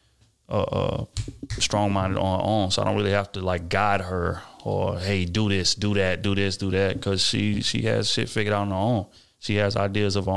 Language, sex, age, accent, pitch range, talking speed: English, male, 30-49, American, 95-110 Hz, 230 wpm